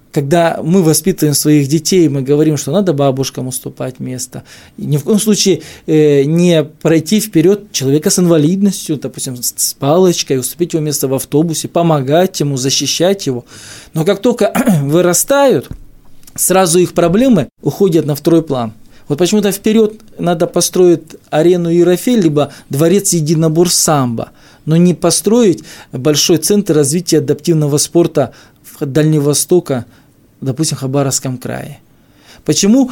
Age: 20-39